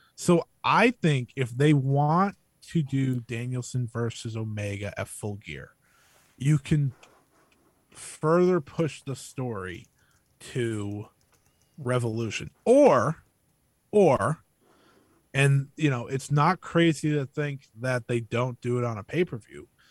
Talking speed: 120 wpm